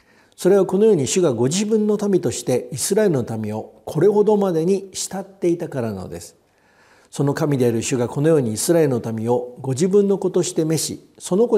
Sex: male